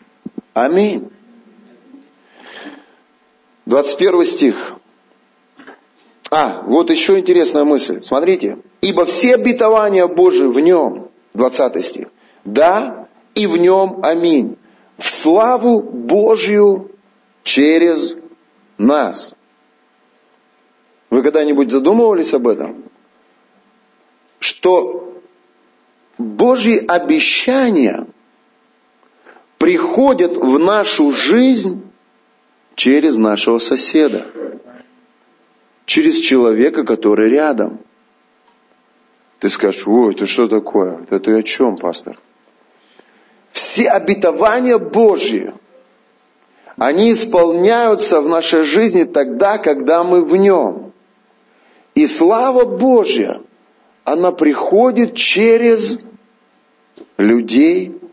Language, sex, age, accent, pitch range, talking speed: Russian, male, 40-59, native, 160-260 Hz, 80 wpm